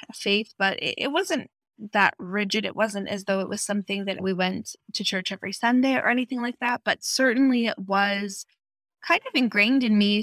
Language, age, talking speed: English, 20-39, 200 wpm